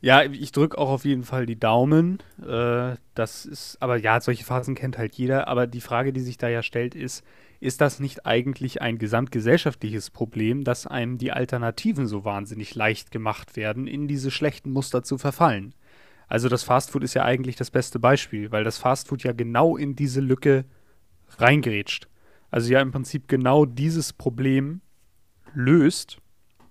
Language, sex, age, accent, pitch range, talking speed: German, male, 30-49, German, 115-145 Hz, 170 wpm